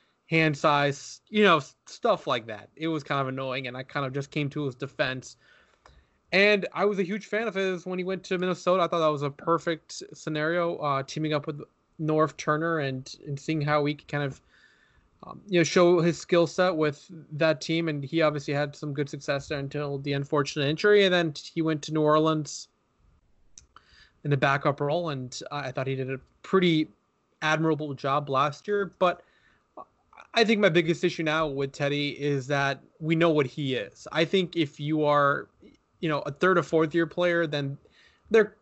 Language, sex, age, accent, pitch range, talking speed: English, male, 20-39, American, 140-170 Hz, 200 wpm